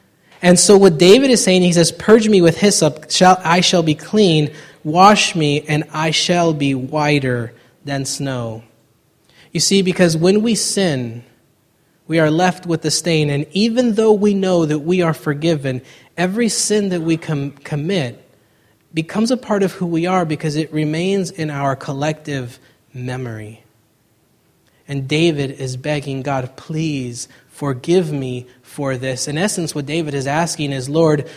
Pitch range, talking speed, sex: 135-170 Hz, 165 wpm, male